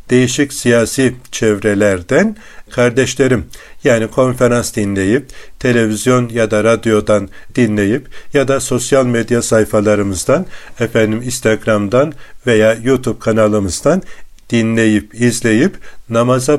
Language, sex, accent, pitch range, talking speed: Turkish, male, native, 105-125 Hz, 90 wpm